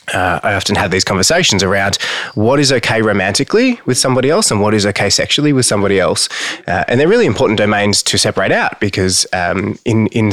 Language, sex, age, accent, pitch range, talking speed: English, male, 20-39, Australian, 95-115 Hz, 205 wpm